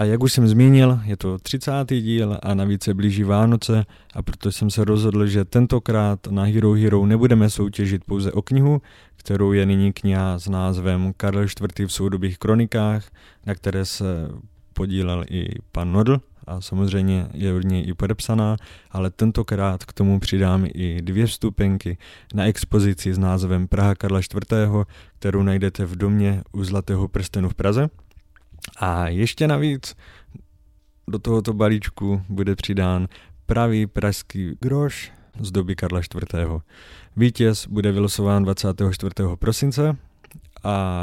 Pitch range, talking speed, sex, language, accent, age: 95-110 Hz, 145 wpm, male, Czech, native, 20-39